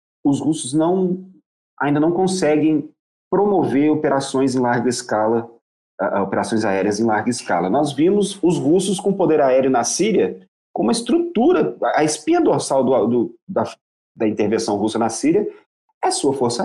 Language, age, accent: Portuguese, 40-59, Brazilian